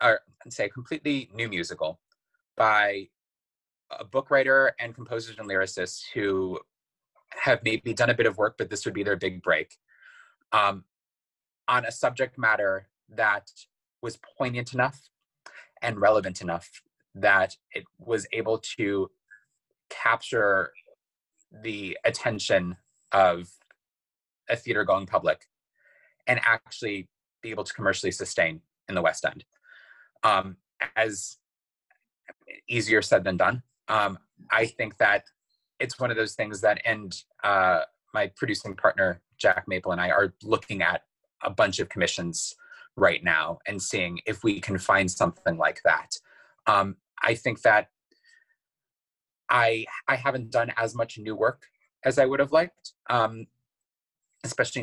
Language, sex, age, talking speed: English, male, 20-39, 140 wpm